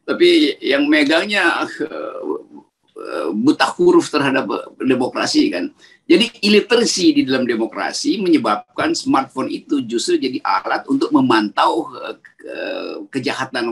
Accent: native